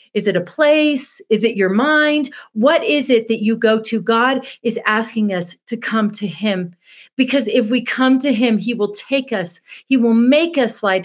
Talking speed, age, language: 205 wpm, 40-59, English